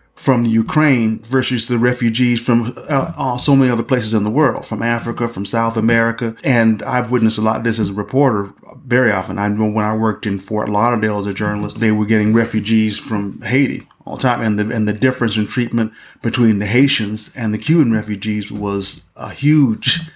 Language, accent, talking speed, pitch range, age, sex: English, American, 210 wpm, 110-130 Hz, 30-49, male